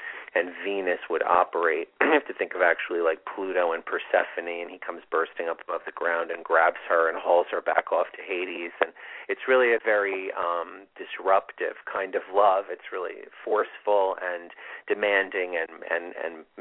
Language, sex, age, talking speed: English, male, 40-59, 180 wpm